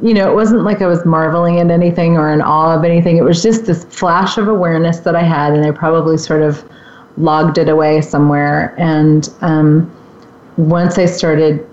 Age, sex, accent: 30-49, female, American